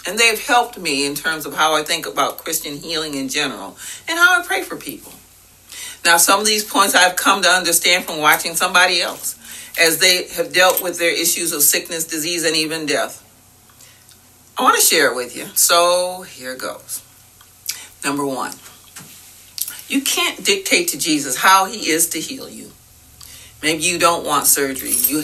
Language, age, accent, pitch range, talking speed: English, 40-59, American, 140-180 Hz, 180 wpm